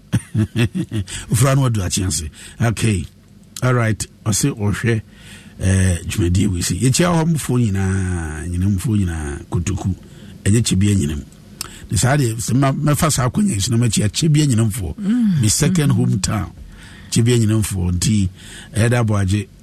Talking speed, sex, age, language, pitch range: 45 wpm, male, 50-69, English, 95-130 Hz